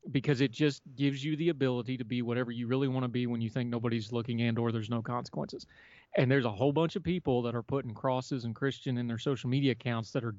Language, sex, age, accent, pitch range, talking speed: English, male, 30-49, American, 120-140 Hz, 260 wpm